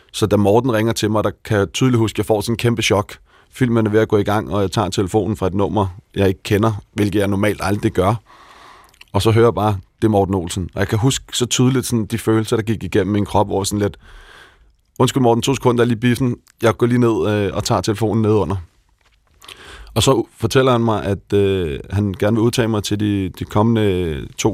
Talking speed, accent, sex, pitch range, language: 230 wpm, native, male, 100-115 Hz, Danish